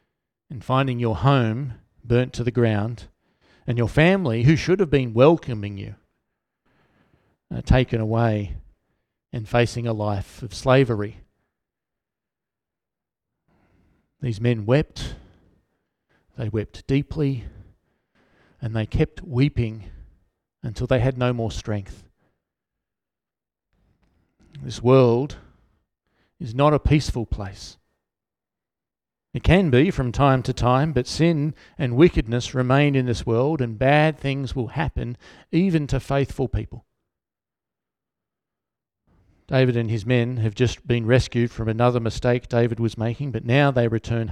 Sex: male